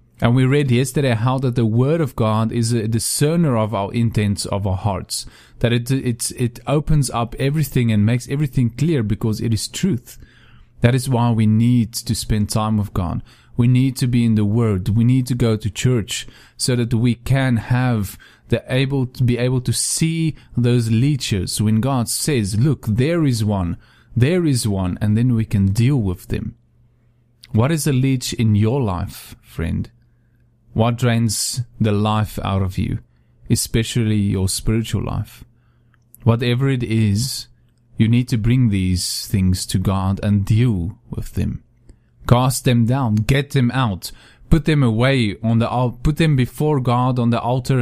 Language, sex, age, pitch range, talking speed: English, male, 30-49, 110-125 Hz, 175 wpm